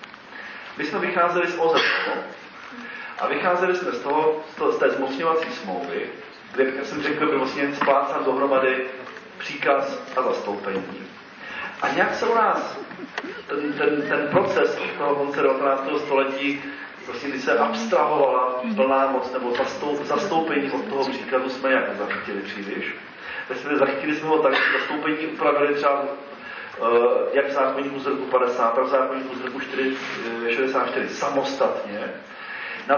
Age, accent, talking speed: 40-59, native, 130 wpm